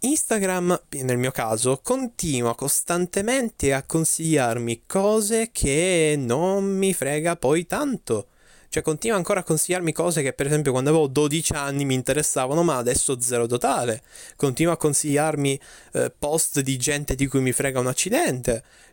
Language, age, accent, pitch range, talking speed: Italian, 20-39, native, 120-155 Hz, 150 wpm